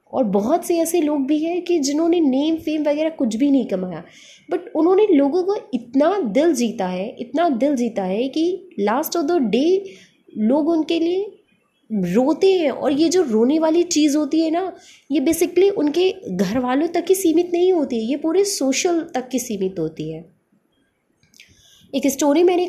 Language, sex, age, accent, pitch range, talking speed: Hindi, female, 20-39, native, 230-330 Hz, 180 wpm